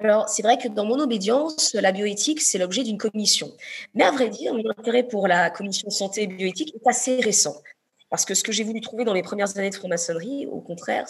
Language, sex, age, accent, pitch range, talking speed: French, female, 20-39, French, 165-215 Hz, 225 wpm